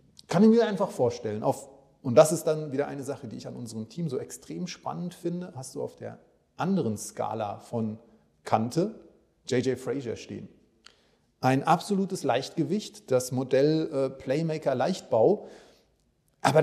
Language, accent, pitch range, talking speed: German, German, 130-175 Hz, 150 wpm